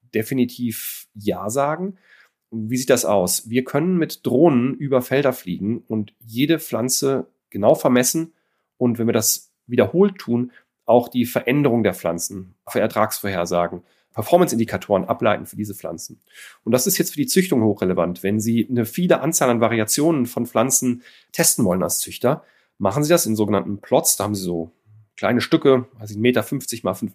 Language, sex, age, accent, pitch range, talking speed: German, male, 40-59, German, 110-140 Hz, 170 wpm